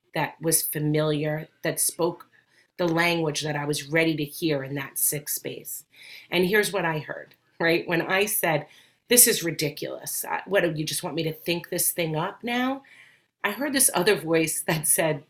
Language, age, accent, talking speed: English, 40-59, American, 190 wpm